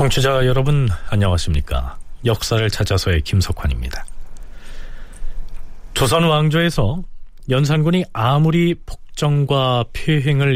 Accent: native